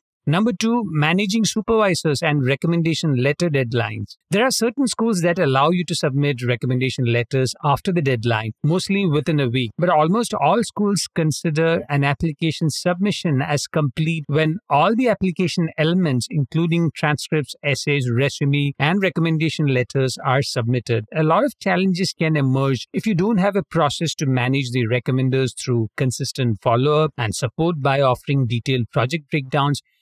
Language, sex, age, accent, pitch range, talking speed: English, male, 50-69, Indian, 135-180 Hz, 150 wpm